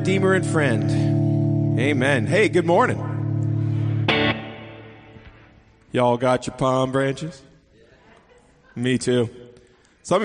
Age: 30-49